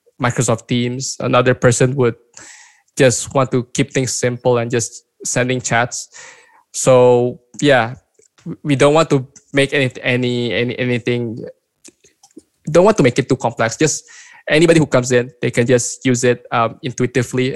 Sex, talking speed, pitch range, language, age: male, 155 wpm, 120-135 Hz, English, 20-39